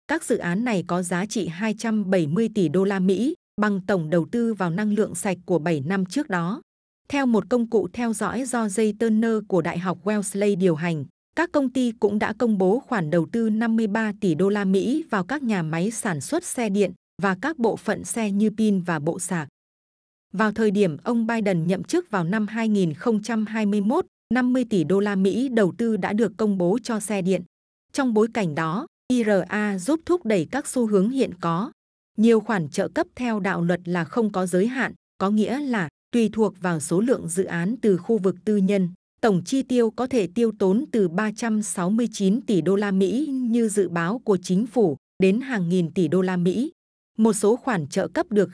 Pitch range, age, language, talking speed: 190-230 Hz, 20-39, Vietnamese, 210 wpm